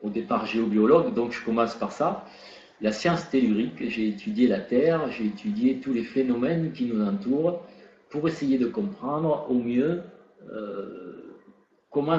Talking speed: 155 wpm